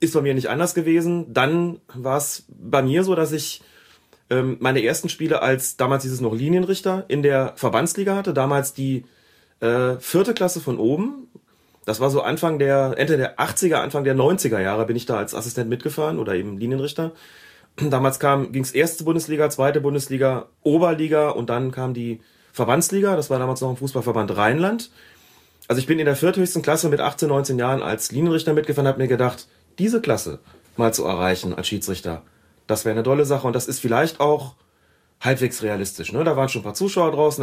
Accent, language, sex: German, German, male